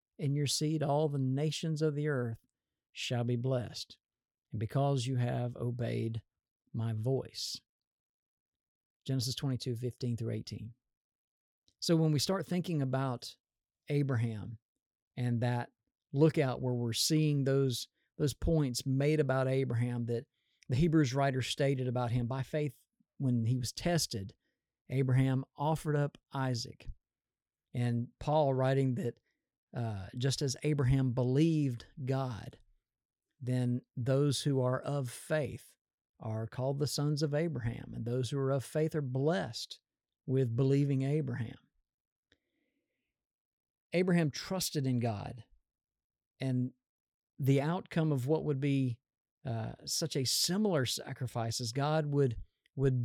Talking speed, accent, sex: 130 wpm, American, male